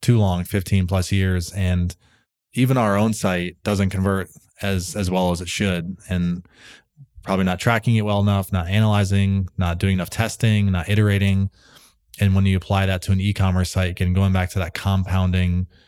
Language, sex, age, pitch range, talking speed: English, male, 20-39, 90-105 Hz, 180 wpm